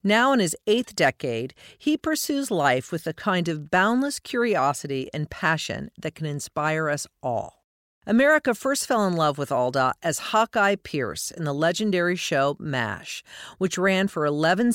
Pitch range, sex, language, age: 160-215 Hz, female, English, 50-69